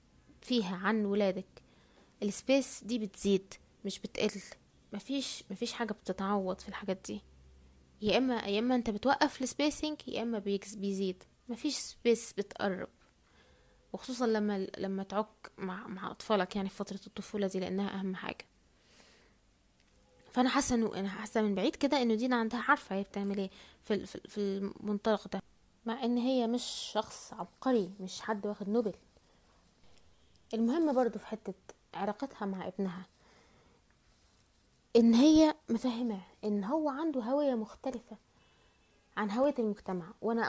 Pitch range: 195-240 Hz